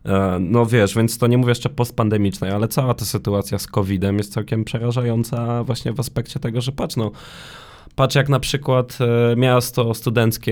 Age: 20-39